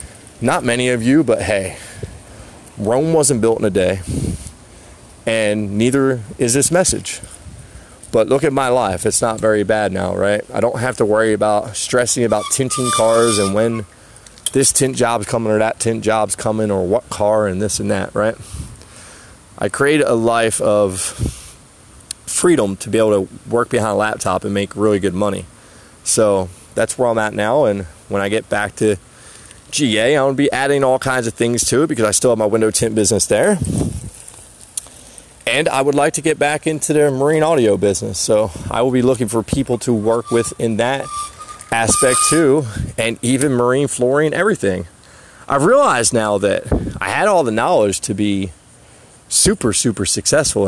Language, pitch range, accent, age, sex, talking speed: English, 105-125 Hz, American, 20-39, male, 180 wpm